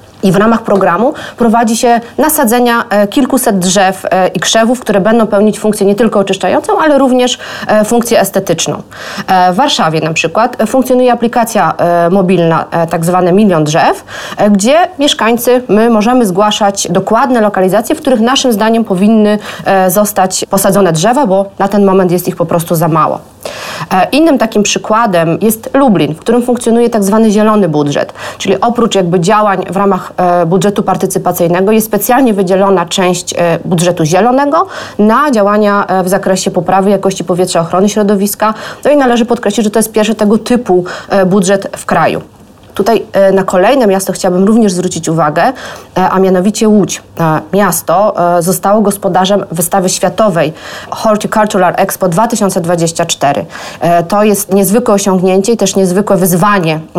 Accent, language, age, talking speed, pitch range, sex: native, Polish, 30-49, 140 wpm, 185-220 Hz, female